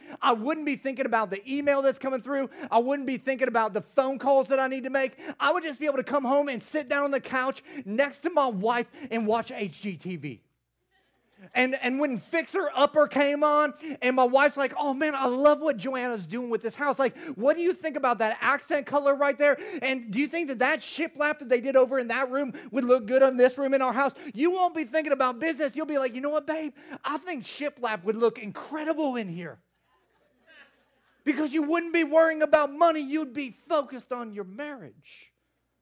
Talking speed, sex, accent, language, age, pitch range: 225 wpm, male, American, English, 30-49, 205-280 Hz